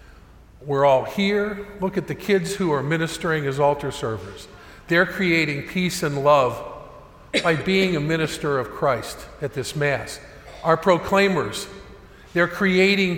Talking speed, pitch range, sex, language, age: 140 wpm, 145-185 Hz, male, English, 50-69